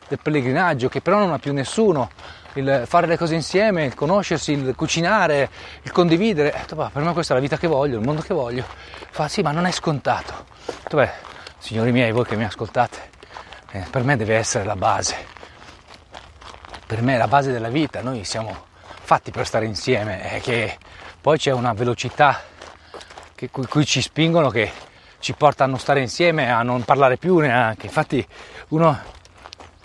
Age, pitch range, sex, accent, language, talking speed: 30-49, 115-155 Hz, male, native, Italian, 175 wpm